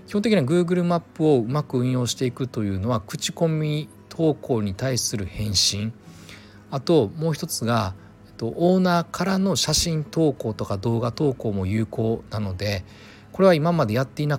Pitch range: 105-140 Hz